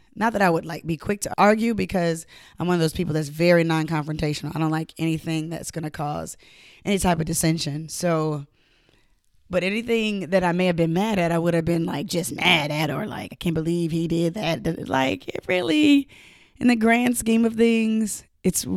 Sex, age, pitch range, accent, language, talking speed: female, 20-39, 160-190 Hz, American, English, 210 wpm